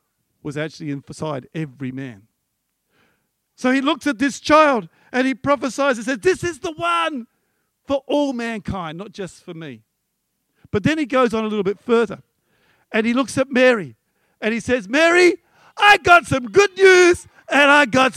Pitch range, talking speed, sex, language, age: 180-260 Hz, 175 wpm, male, English, 50-69